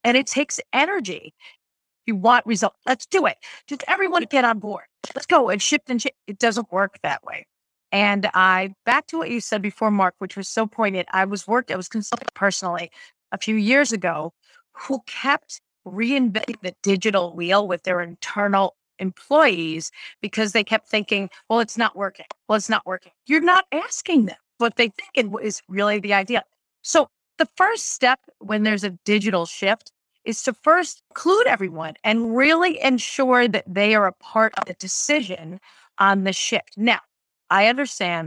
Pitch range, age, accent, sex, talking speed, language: 195-260 Hz, 40-59, American, female, 180 wpm, English